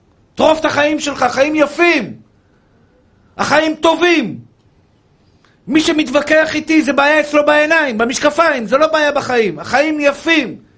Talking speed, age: 120 wpm, 50-69